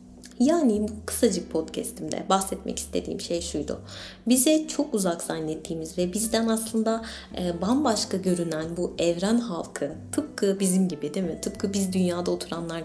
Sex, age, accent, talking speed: female, 20-39, native, 140 wpm